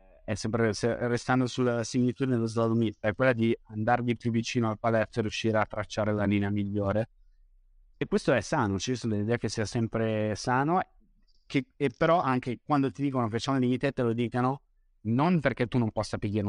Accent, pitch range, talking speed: native, 105-125 Hz, 195 wpm